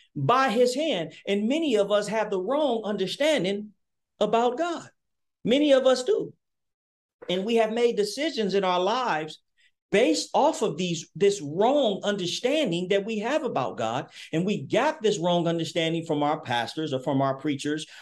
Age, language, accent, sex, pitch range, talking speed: 40-59, English, American, male, 155-235 Hz, 165 wpm